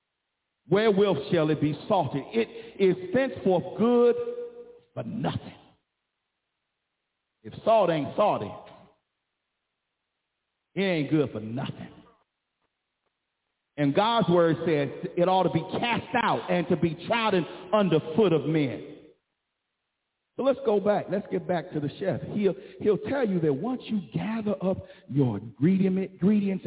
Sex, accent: male, American